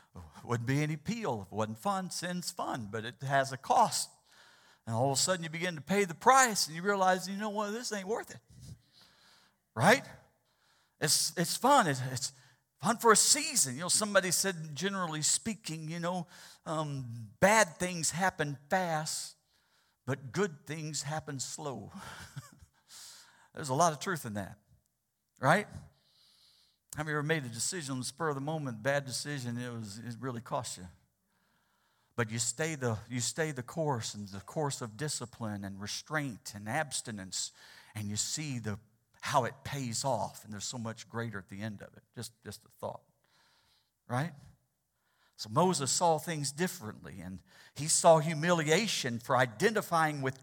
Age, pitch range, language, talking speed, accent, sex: 50-69, 120-170 Hz, English, 170 wpm, American, male